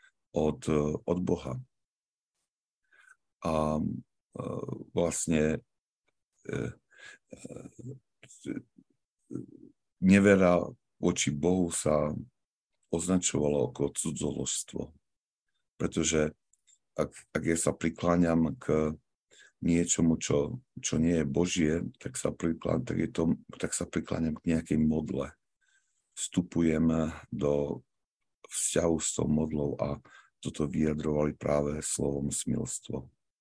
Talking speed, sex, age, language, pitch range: 95 wpm, male, 50-69, Slovak, 75-90 Hz